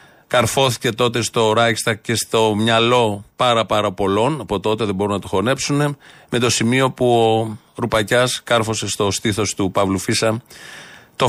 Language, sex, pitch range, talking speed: Greek, male, 100-130 Hz, 160 wpm